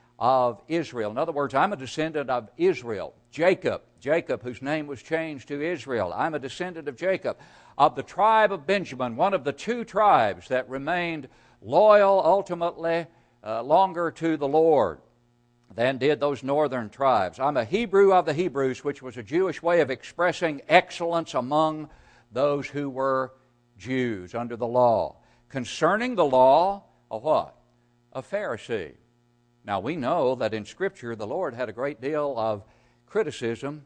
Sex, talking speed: male, 160 wpm